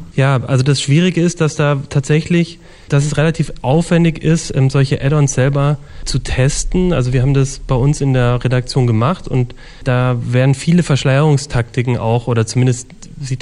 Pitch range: 125-145 Hz